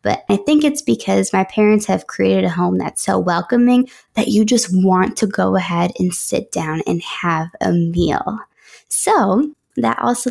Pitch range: 180-235 Hz